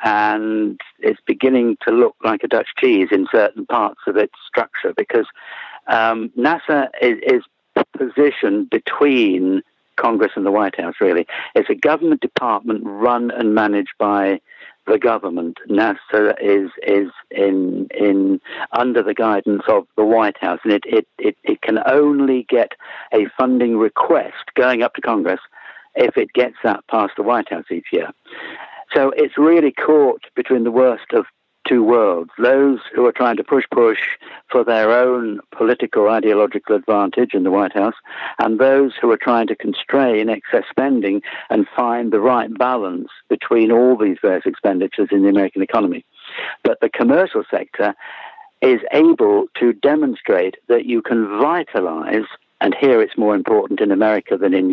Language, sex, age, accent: English, male, 60-79, British